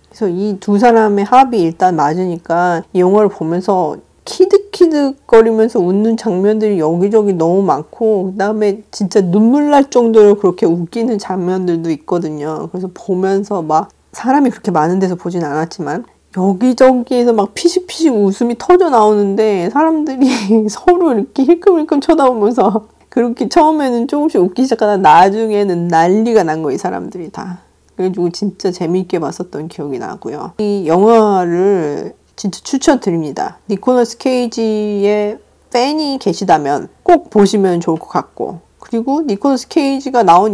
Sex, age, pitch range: female, 40-59, 185-245 Hz